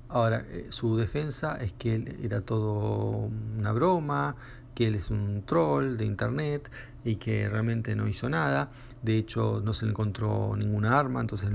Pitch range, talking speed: 110-125 Hz, 165 wpm